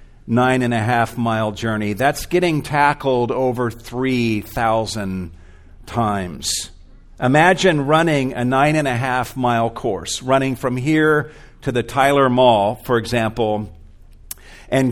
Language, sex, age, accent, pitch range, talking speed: English, male, 50-69, American, 110-145 Hz, 95 wpm